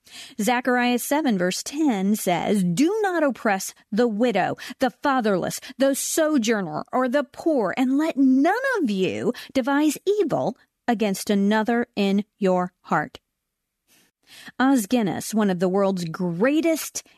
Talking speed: 125 wpm